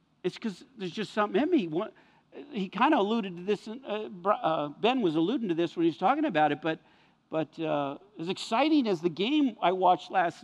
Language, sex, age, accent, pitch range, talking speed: English, male, 50-69, American, 175-265 Hz, 215 wpm